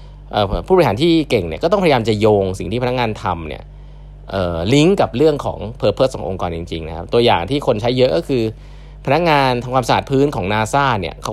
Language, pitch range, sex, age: Thai, 105-145 Hz, male, 20-39